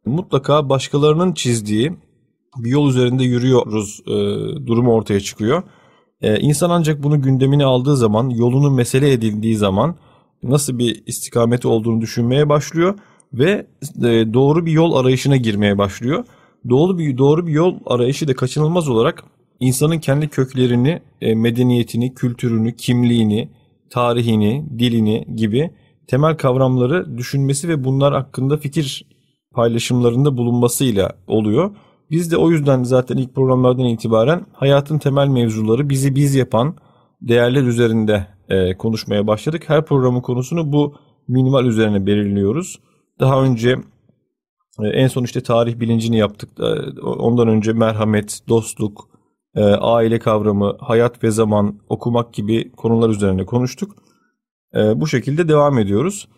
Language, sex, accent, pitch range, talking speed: Turkish, male, native, 115-145 Hz, 125 wpm